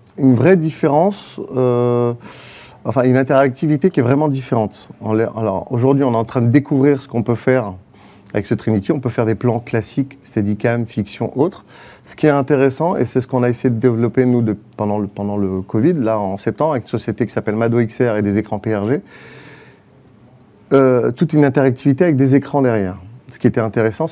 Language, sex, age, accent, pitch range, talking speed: French, male, 40-59, French, 110-135 Hz, 200 wpm